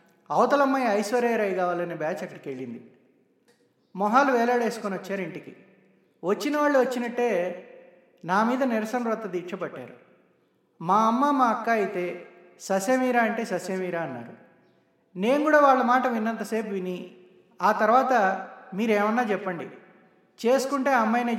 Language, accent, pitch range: Telugu, native, 185-245 Hz